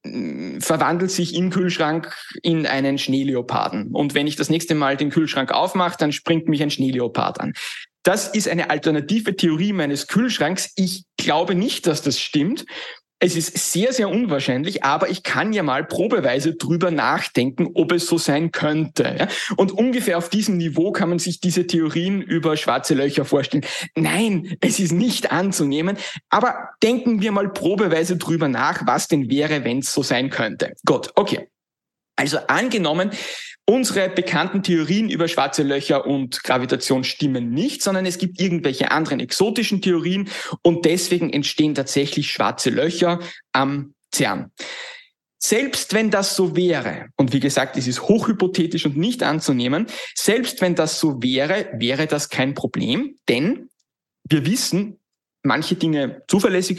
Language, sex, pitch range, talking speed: German, male, 150-195 Hz, 155 wpm